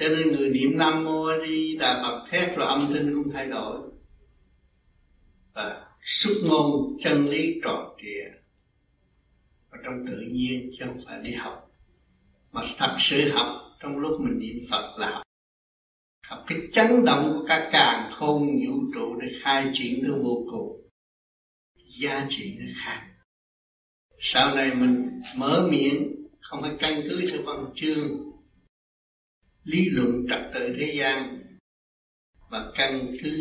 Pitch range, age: 130-170 Hz, 60-79